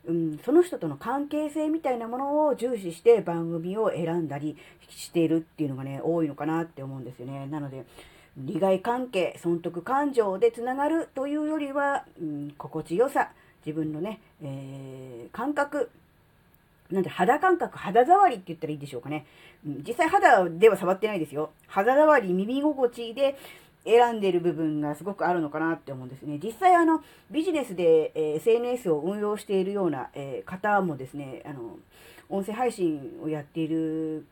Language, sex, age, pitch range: Japanese, female, 40-59, 155-255 Hz